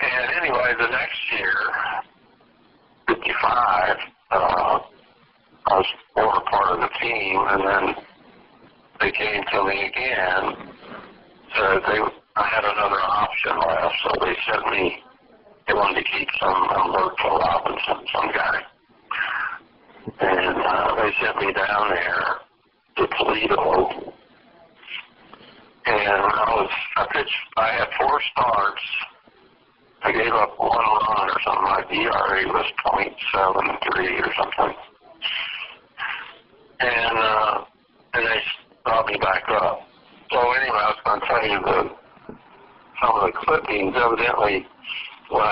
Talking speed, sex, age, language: 125 wpm, male, 50-69, English